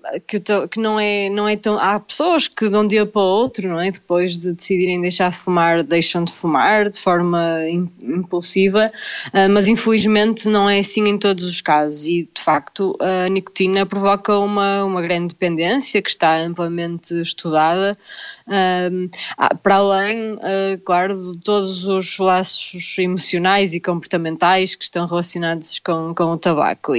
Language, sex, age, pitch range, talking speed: Portuguese, female, 20-39, 175-205 Hz, 155 wpm